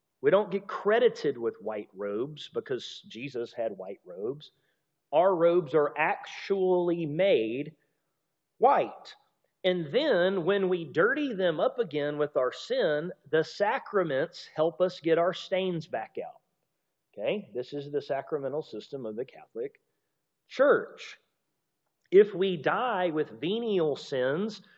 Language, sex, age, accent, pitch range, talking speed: English, male, 40-59, American, 150-225 Hz, 130 wpm